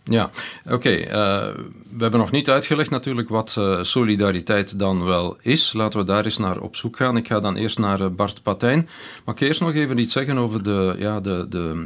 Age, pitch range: 40-59, 95-115 Hz